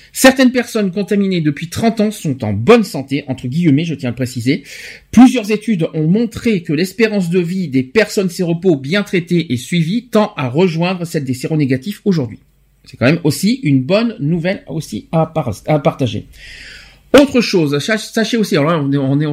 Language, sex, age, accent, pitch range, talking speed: French, male, 50-69, French, 135-195 Hz, 180 wpm